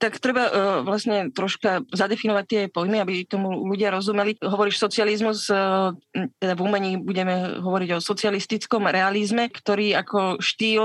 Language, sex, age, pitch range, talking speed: Slovak, female, 20-39, 180-205 Hz, 145 wpm